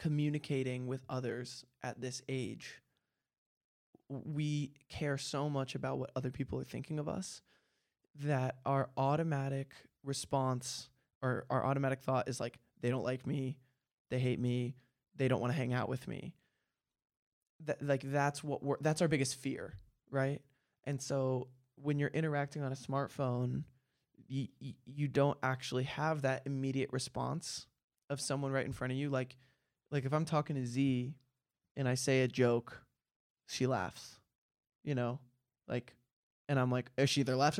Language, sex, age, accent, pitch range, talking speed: English, male, 20-39, American, 125-140 Hz, 160 wpm